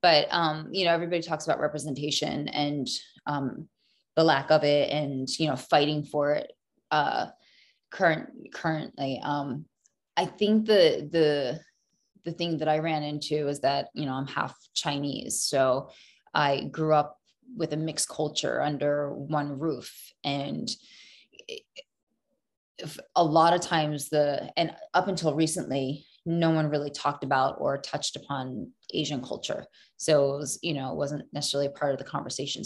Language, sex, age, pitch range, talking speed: English, female, 20-39, 140-160 Hz, 155 wpm